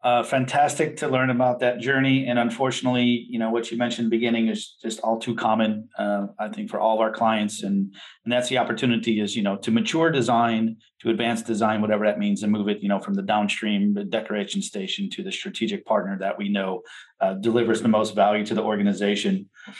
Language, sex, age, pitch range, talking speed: English, male, 30-49, 110-135 Hz, 220 wpm